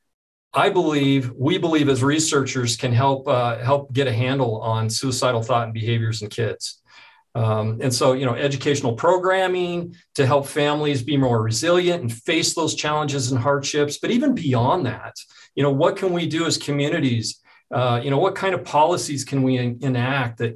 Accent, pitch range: American, 125-155 Hz